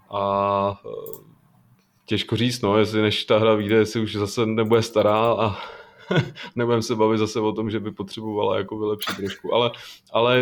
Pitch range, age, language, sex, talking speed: 100-115 Hz, 20-39, Czech, male, 160 wpm